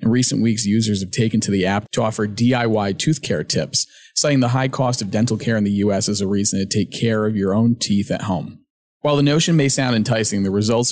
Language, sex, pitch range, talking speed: English, male, 105-125 Hz, 245 wpm